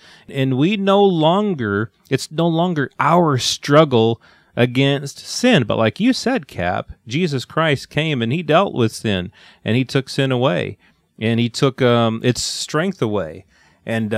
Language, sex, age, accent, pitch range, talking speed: English, male, 30-49, American, 110-160 Hz, 155 wpm